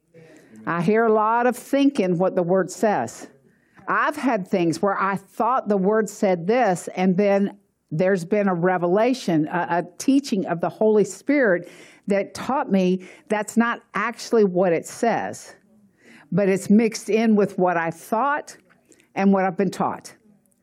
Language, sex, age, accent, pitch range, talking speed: English, female, 60-79, American, 170-210 Hz, 160 wpm